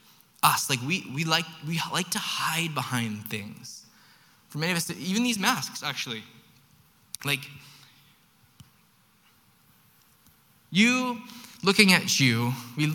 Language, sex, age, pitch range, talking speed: English, male, 20-39, 125-180 Hz, 115 wpm